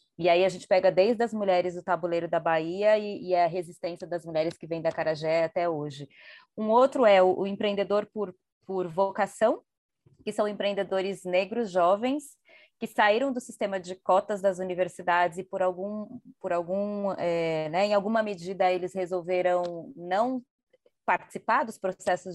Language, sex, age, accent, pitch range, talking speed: Portuguese, female, 20-39, Brazilian, 180-215 Hz, 165 wpm